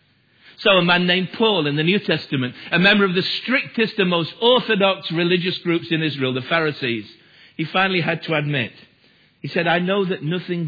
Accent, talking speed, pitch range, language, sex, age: British, 190 wpm, 130-190 Hz, English, male, 50-69